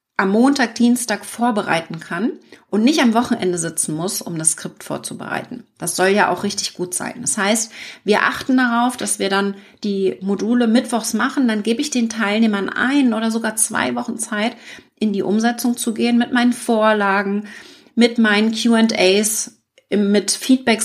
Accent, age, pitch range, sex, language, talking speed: German, 40-59, 195-245 Hz, female, German, 165 wpm